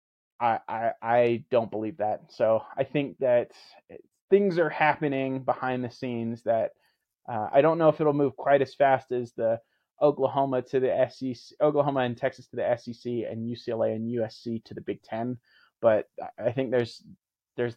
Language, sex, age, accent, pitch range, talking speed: English, male, 30-49, American, 115-140 Hz, 170 wpm